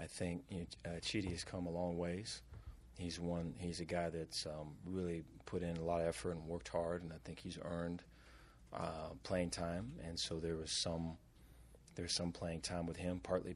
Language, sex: English, male